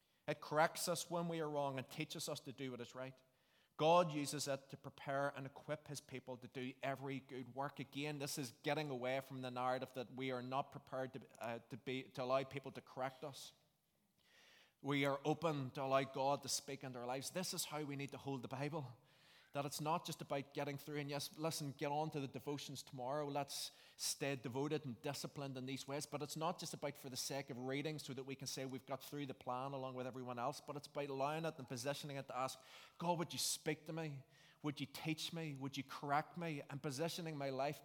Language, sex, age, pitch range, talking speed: English, male, 20-39, 130-145 Hz, 235 wpm